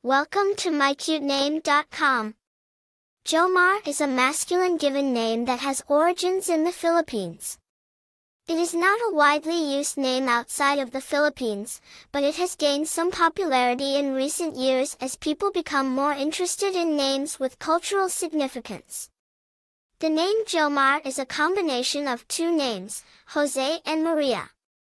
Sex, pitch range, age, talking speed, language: male, 270-335 Hz, 10-29, 135 wpm, English